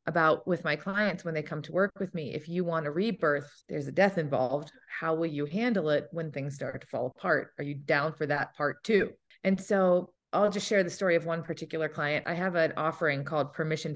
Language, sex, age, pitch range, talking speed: English, female, 30-49, 155-190 Hz, 235 wpm